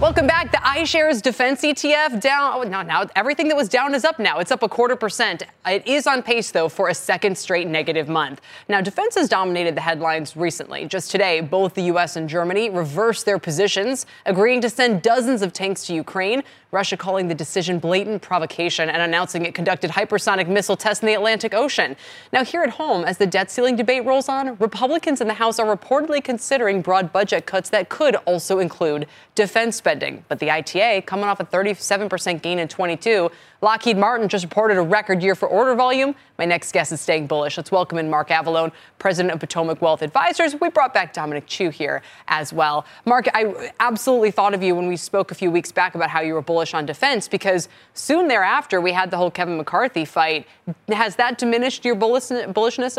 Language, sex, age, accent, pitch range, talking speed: English, female, 20-39, American, 170-245 Hz, 205 wpm